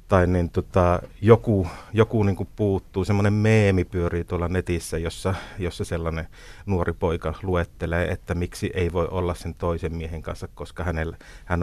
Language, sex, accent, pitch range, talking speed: Finnish, male, native, 85-100 Hz, 160 wpm